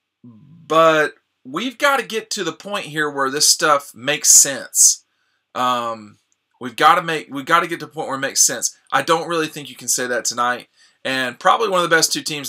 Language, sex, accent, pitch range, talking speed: English, male, American, 125-150 Hz, 225 wpm